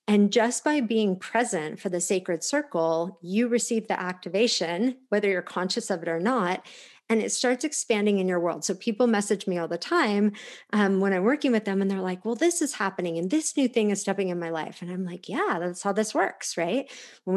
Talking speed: 230 wpm